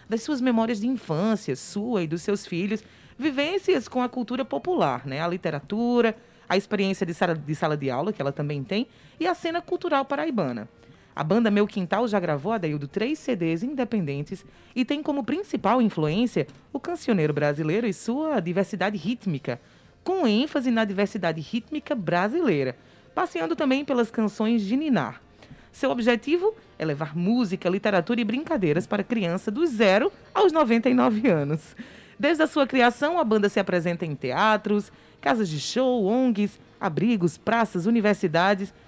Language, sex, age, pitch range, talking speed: Portuguese, female, 20-39, 180-255 Hz, 155 wpm